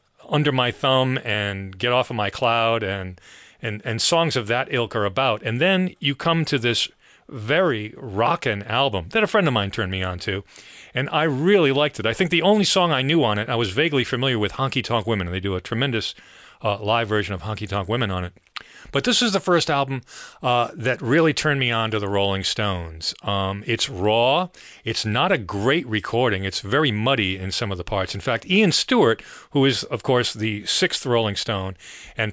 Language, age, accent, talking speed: English, 40-59, American, 215 wpm